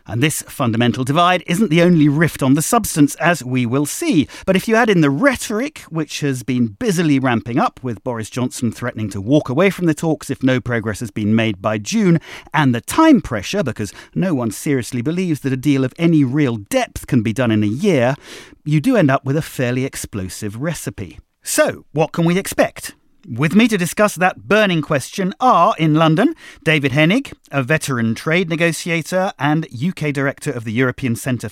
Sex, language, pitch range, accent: male, English, 120-170 Hz, British